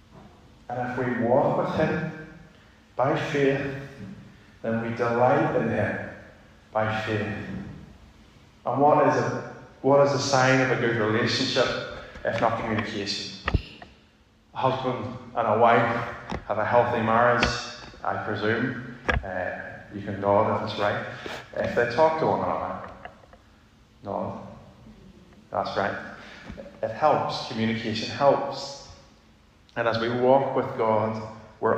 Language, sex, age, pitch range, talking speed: English, male, 30-49, 110-135 Hz, 130 wpm